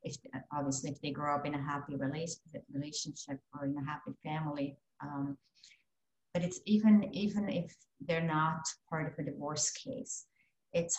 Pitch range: 150-185 Hz